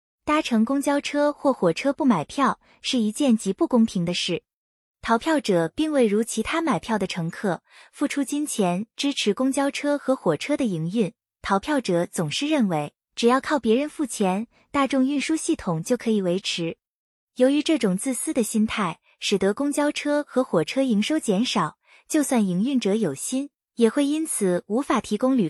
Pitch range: 200-285 Hz